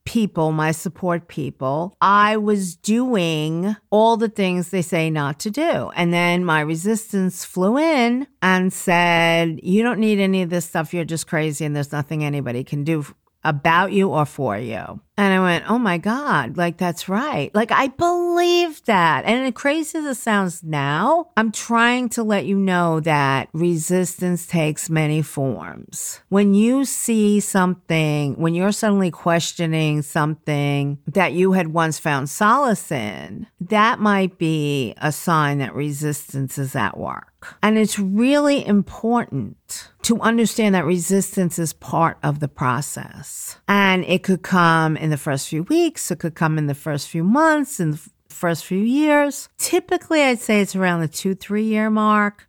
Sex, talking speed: female, 165 wpm